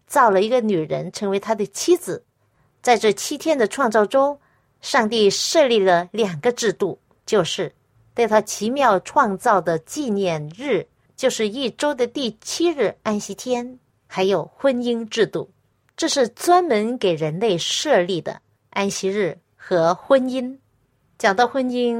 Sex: female